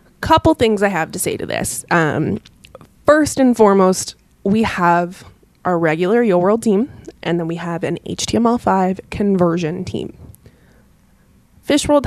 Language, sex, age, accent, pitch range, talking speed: English, female, 20-39, American, 170-220 Hz, 135 wpm